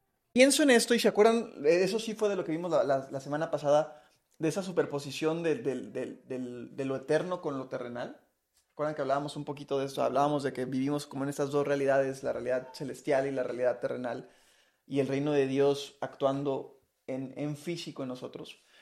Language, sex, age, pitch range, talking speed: Spanish, male, 30-49, 145-220 Hz, 200 wpm